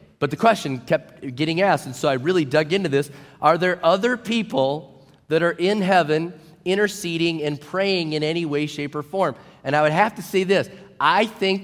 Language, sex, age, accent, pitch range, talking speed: English, male, 30-49, American, 140-175 Hz, 200 wpm